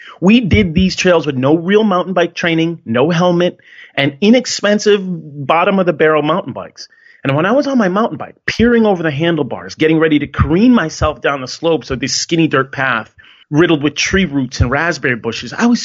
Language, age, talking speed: English, 30-49, 195 wpm